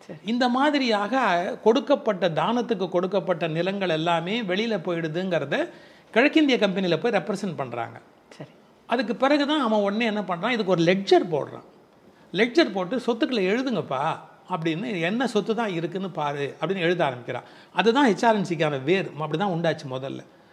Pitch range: 160-225 Hz